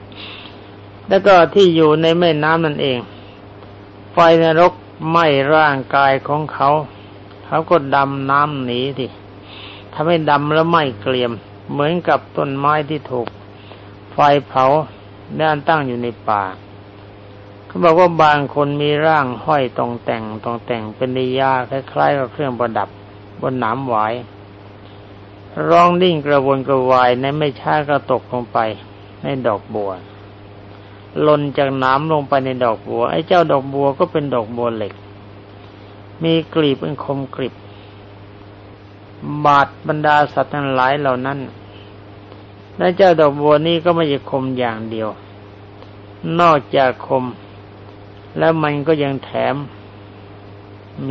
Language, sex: Thai, male